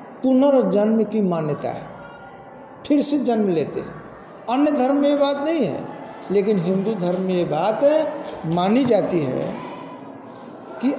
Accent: native